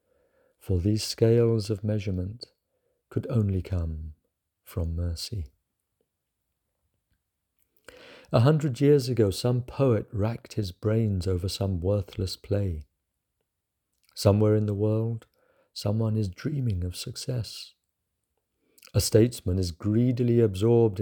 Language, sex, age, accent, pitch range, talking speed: English, male, 50-69, British, 95-115 Hz, 105 wpm